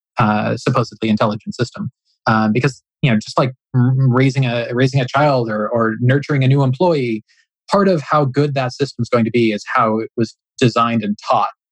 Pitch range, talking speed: 115-145 Hz, 195 wpm